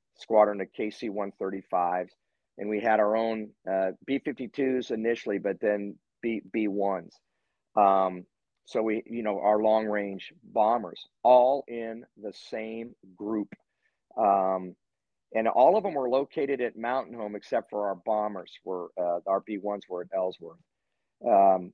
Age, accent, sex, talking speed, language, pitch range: 50-69, American, male, 130 wpm, English, 95-115 Hz